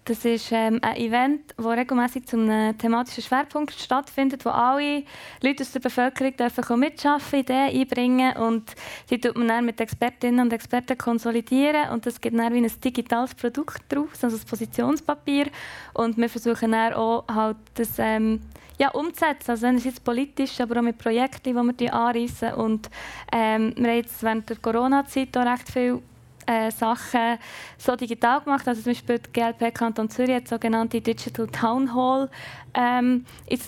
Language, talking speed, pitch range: German, 165 wpm, 230-260 Hz